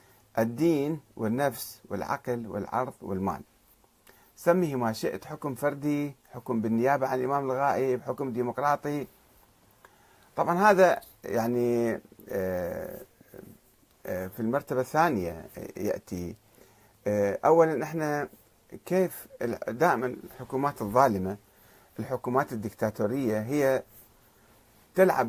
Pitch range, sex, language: 115-160 Hz, male, Arabic